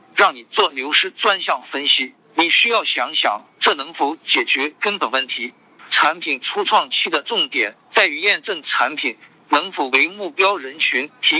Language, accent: Chinese, native